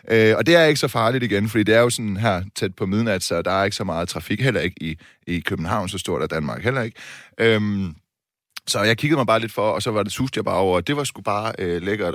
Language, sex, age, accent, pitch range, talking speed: Danish, male, 30-49, native, 95-125 Hz, 280 wpm